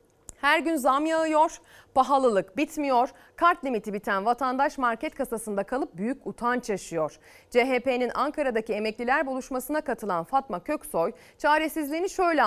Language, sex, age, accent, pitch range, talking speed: Turkish, female, 30-49, native, 225-315 Hz, 120 wpm